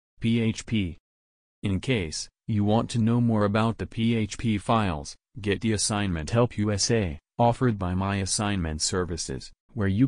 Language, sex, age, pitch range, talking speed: English, male, 40-59, 90-115 Hz, 145 wpm